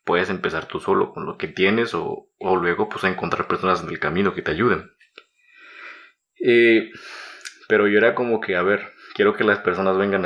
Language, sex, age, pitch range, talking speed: Spanish, male, 30-49, 90-115 Hz, 200 wpm